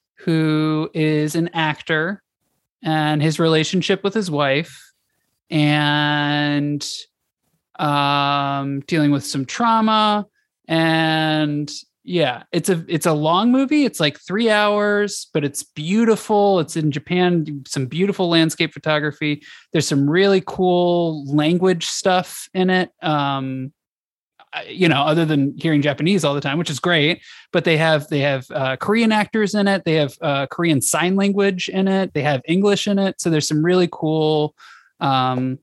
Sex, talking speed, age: male, 150 wpm, 20-39